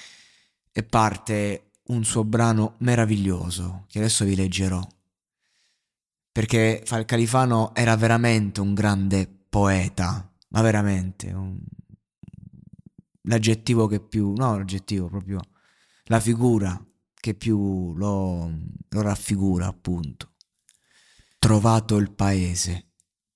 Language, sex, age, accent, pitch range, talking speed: Italian, male, 30-49, native, 90-105 Hz, 90 wpm